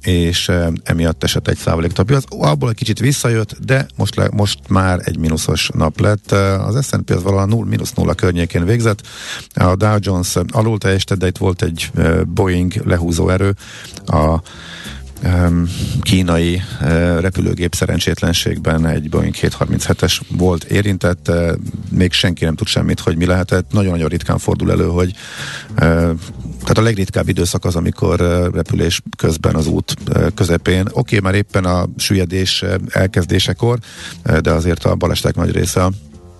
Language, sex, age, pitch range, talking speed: Hungarian, male, 50-69, 85-105 Hz, 150 wpm